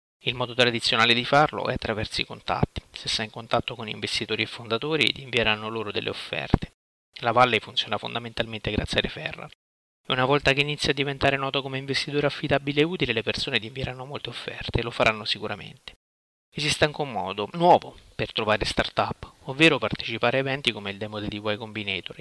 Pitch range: 110-130 Hz